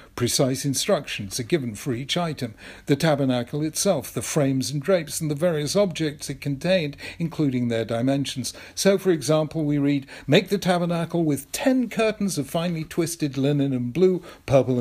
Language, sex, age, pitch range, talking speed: English, male, 50-69, 130-175 Hz, 165 wpm